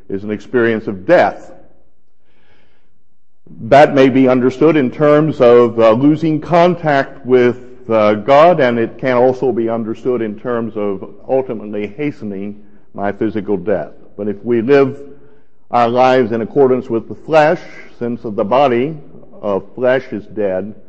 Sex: male